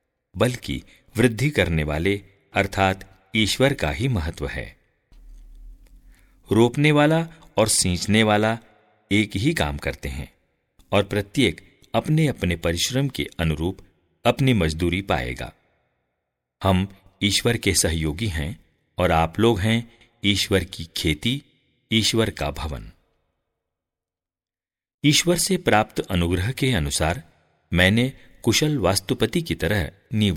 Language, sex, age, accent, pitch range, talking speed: English, male, 50-69, Indian, 80-115 Hz, 115 wpm